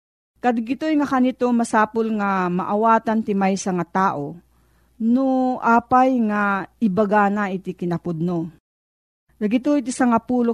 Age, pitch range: 40-59, 180-245 Hz